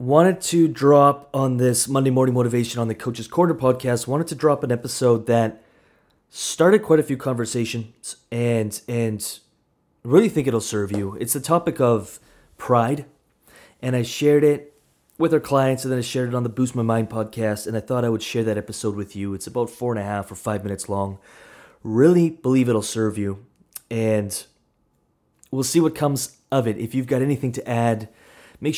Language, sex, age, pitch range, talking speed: English, male, 20-39, 110-140 Hz, 195 wpm